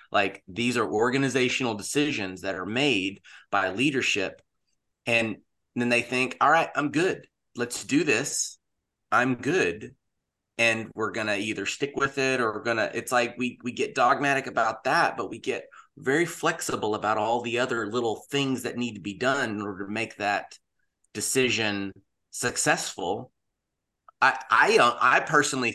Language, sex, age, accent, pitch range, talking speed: English, male, 30-49, American, 105-125 Hz, 165 wpm